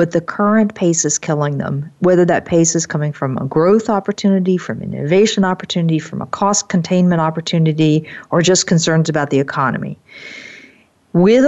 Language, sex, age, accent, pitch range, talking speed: English, female, 50-69, American, 150-195 Hz, 165 wpm